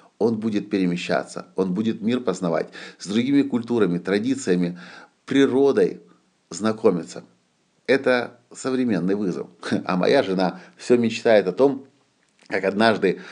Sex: male